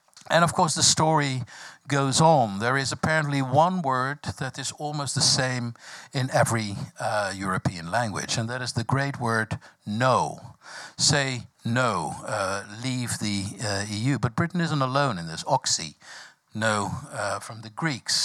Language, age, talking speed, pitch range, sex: French, 60-79, 160 wpm, 110-145 Hz, male